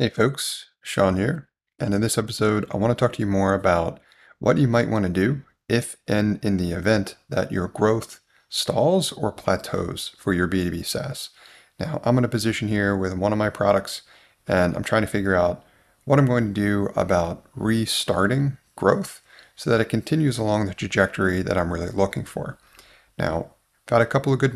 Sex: male